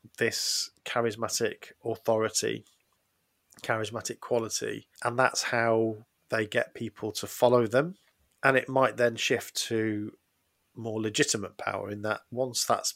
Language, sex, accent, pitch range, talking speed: English, male, British, 110-125 Hz, 125 wpm